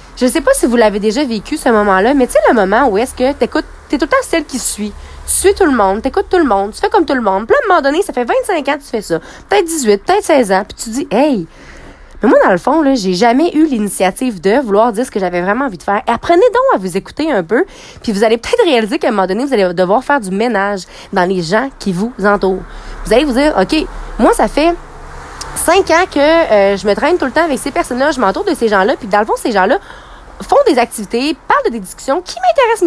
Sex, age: female, 20-39